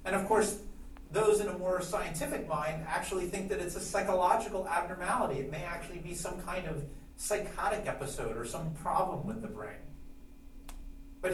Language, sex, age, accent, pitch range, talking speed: English, male, 40-59, American, 155-200 Hz, 170 wpm